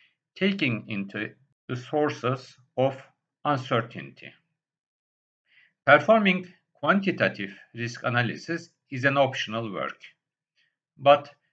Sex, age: male, 50-69